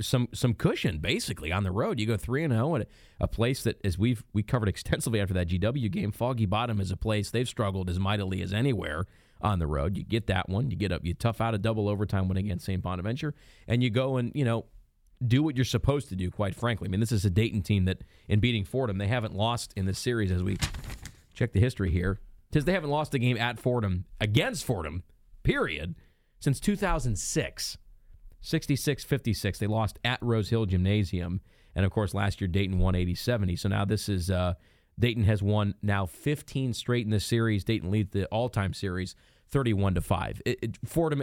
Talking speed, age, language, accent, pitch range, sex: 210 wpm, 30-49, English, American, 95-120 Hz, male